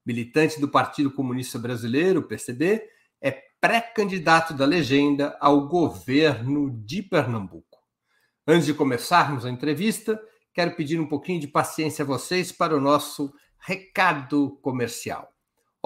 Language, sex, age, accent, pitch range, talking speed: Portuguese, male, 60-79, Brazilian, 135-175 Hz, 130 wpm